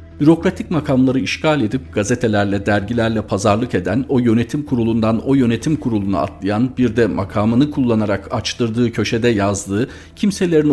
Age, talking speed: 50-69, 130 wpm